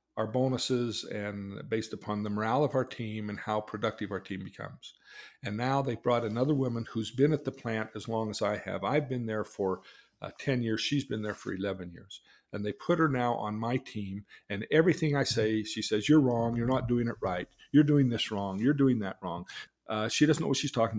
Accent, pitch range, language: American, 110-135 Hz, English